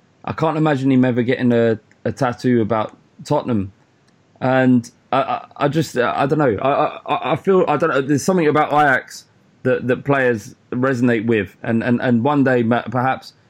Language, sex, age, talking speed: English, male, 20-39, 180 wpm